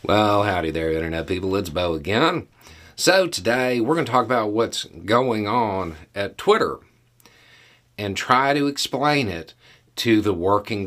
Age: 50-69